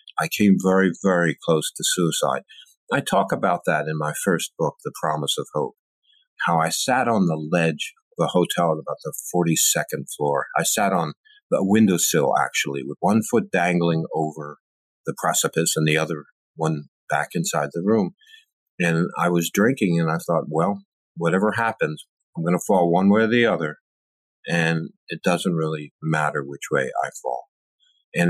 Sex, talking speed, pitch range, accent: male, 175 wpm, 75-100 Hz, American